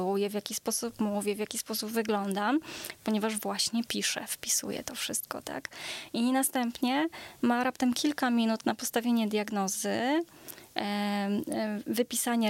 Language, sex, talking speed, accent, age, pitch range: Polish, female, 125 wpm, native, 20-39, 210-245 Hz